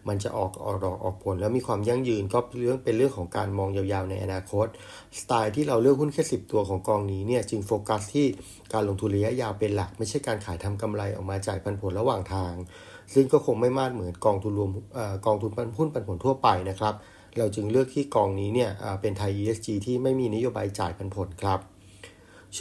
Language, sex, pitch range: Thai, male, 100-120 Hz